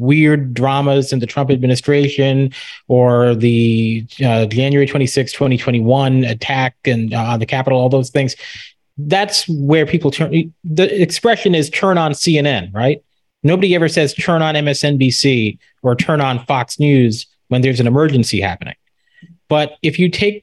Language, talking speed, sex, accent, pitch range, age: English, 160 wpm, male, American, 125-150 Hz, 30-49